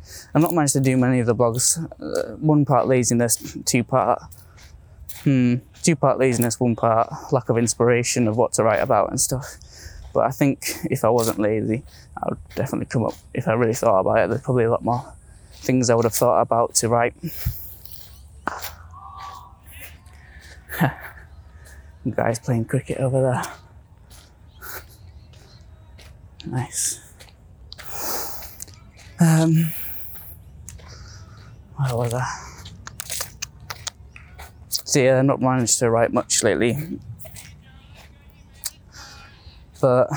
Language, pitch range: English, 90-130 Hz